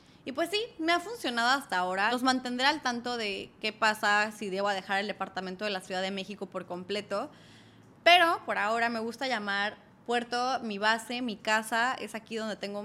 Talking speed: 200 wpm